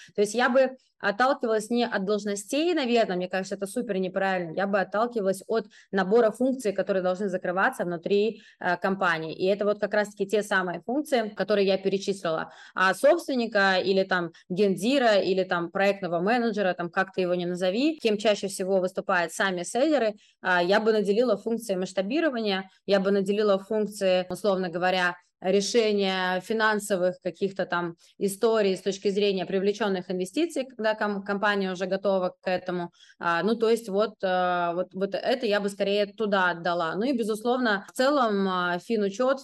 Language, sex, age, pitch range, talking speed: Russian, female, 20-39, 185-220 Hz, 155 wpm